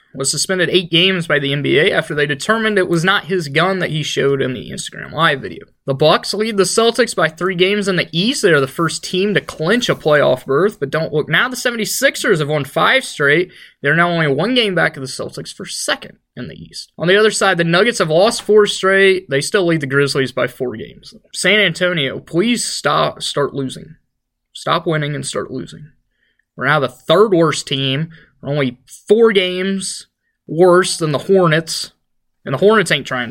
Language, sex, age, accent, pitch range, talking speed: English, male, 20-39, American, 145-205 Hz, 210 wpm